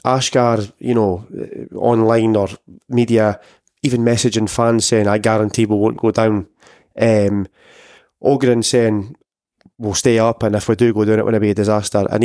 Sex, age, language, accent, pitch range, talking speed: male, 20-39, English, British, 110-130 Hz, 175 wpm